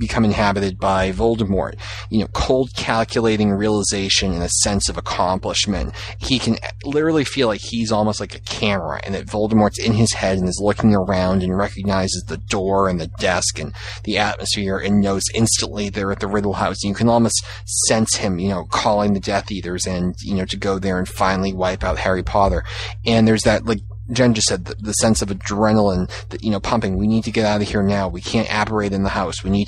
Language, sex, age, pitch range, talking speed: English, male, 30-49, 95-115 Hz, 215 wpm